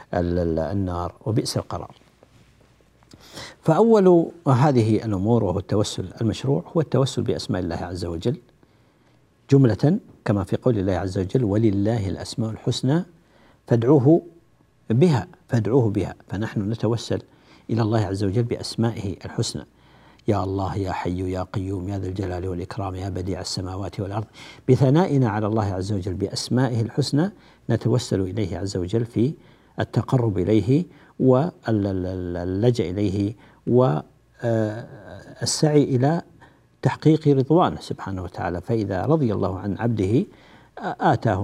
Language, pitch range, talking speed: Arabic, 95-130 Hz, 115 wpm